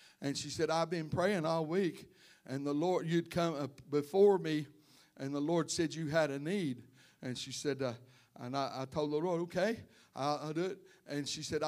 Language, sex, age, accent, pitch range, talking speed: English, male, 60-79, American, 160-215 Hz, 210 wpm